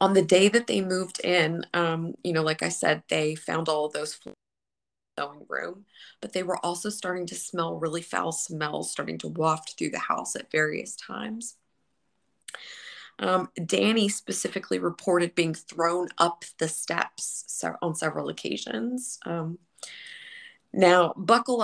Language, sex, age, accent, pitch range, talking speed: English, female, 20-39, American, 160-205 Hz, 145 wpm